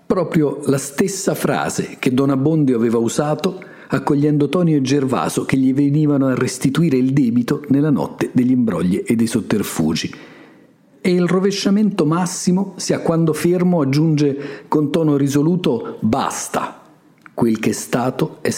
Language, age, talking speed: Italian, 50-69, 140 wpm